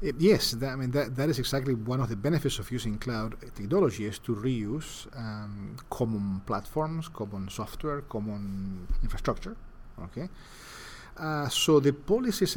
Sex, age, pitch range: male, 40-59, 105-130 Hz